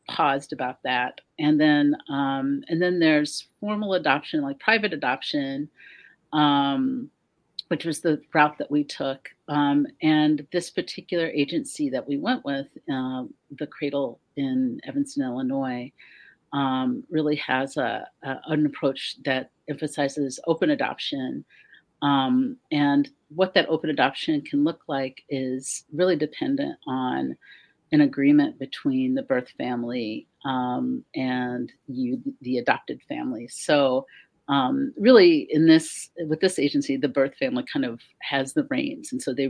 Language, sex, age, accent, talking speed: English, female, 40-59, American, 140 wpm